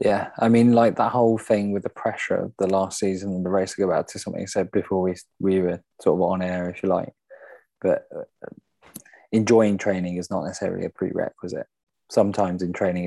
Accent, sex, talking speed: British, male, 215 wpm